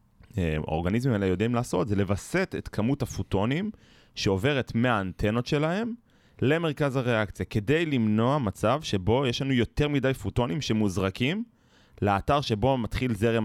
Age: 20-39